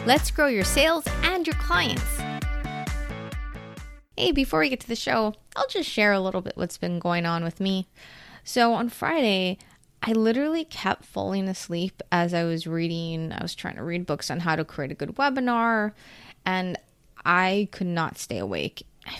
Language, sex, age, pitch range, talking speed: English, female, 20-39, 170-230 Hz, 180 wpm